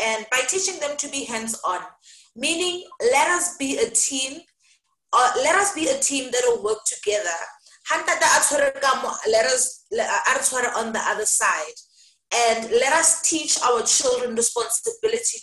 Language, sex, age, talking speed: English, female, 20-39, 140 wpm